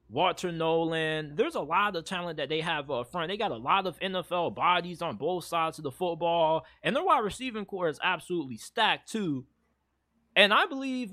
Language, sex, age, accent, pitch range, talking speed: English, male, 20-39, American, 170-210 Hz, 200 wpm